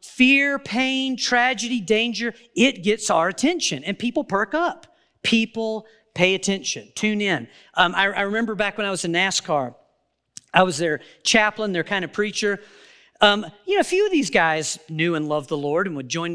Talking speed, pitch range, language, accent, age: 185 wpm, 185-250 Hz, English, American, 40-59